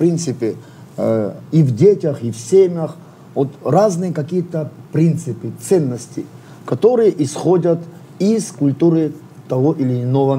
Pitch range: 140-175 Hz